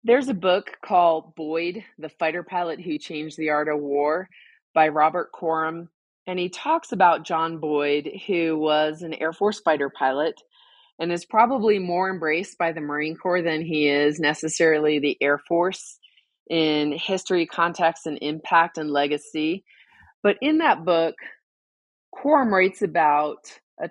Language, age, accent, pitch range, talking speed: English, 30-49, American, 155-190 Hz, 155 wpm